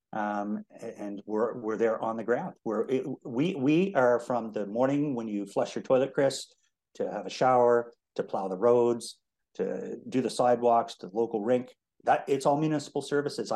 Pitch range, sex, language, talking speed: 115-150 Hz, male, English, 185 wpm